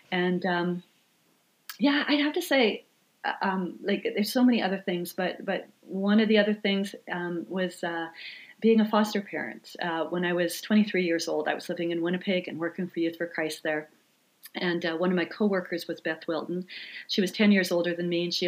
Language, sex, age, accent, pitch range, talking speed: English, female, 40-59, American, 160-195 Hz, 210 wpm